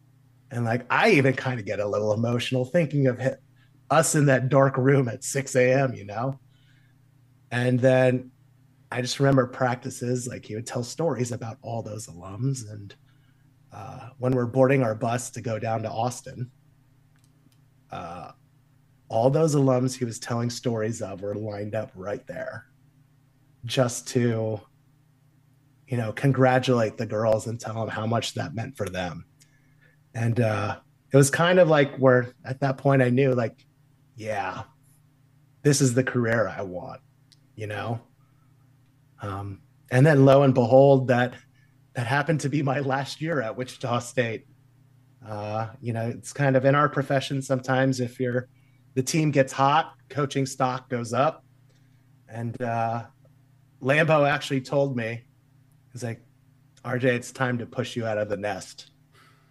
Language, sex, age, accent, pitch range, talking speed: English, male, 30-49, American, 120-135 Hz, 160 wpm